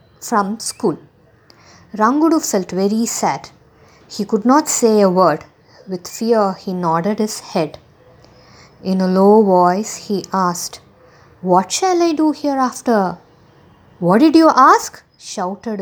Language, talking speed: English, 130 wpm